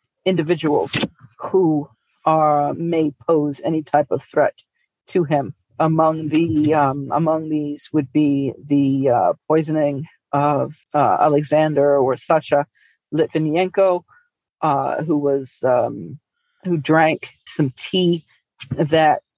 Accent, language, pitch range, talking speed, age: American, English, 145-165 Hz, 110 wpm, 40-59